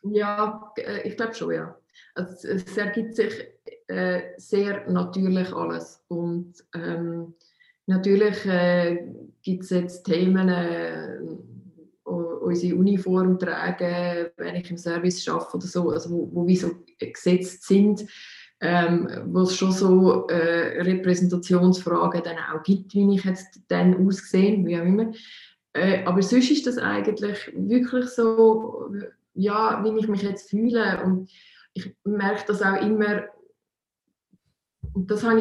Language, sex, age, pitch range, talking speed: English, female, 20-39, 180-210 Hz, 135 wpm